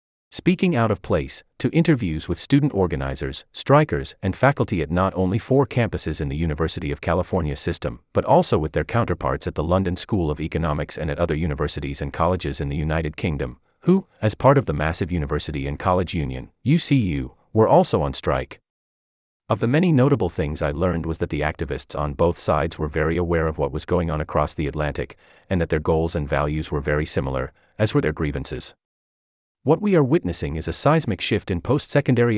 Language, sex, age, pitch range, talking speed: English, male, 40-59, 75-105 Hz, 200 wpm